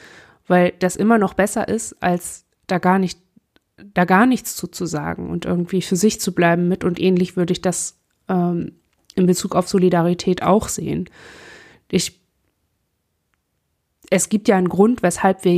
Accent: German